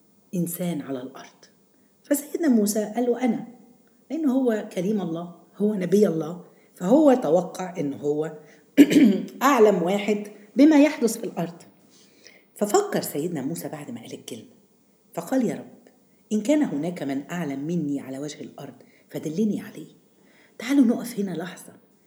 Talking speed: 135 wpm